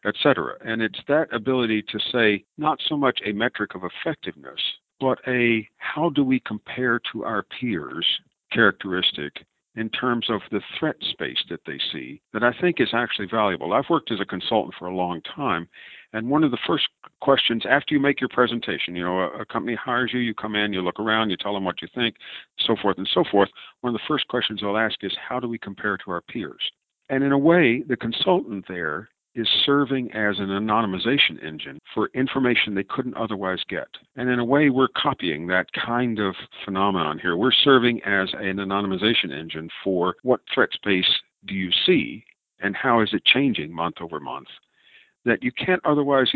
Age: 50-69